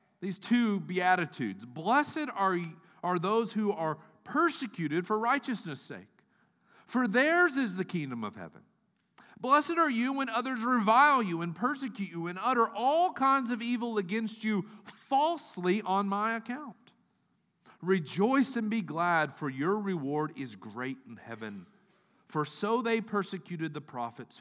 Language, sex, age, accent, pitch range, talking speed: English, male, 40-59, American, 155-220 Hz, 145 wpm